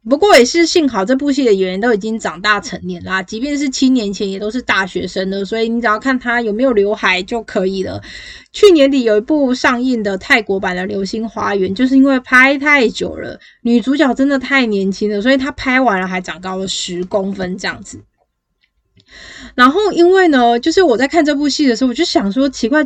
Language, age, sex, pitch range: Chinese, 20-39, female, 200-310 Hz